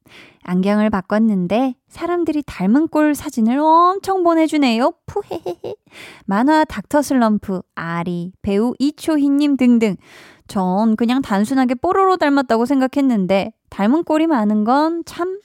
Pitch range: 200-300 Hz